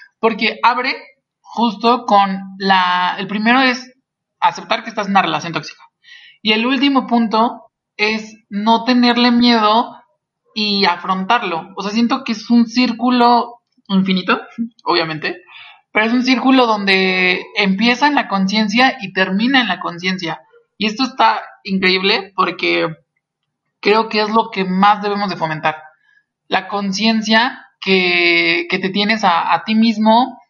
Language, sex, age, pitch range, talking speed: Spanish, male, 20-39, 190-235 Hz, 140 wpm